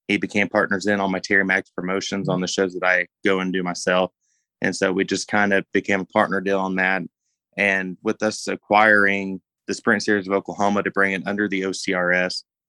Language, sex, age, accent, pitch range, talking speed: English, male, 20-39, American, 95-105 Hz, 215 wpm